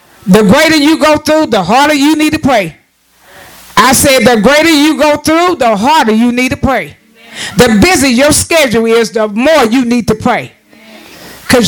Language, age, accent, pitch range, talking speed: English, 50-69, American, 225-285 Hz, 185 wpm